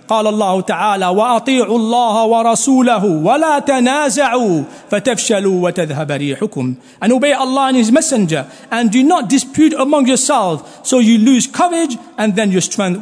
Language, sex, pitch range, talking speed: English, male, 180-260 Hz, 90 wpm